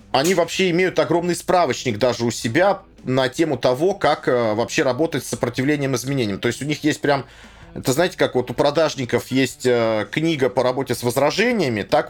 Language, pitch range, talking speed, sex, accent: Russian, 130-170 Hz, 190 wpm, male, native